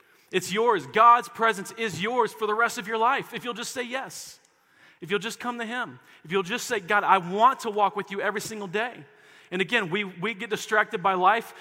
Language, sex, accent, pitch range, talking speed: English, male, American, 145-205 Hz, 235 wpm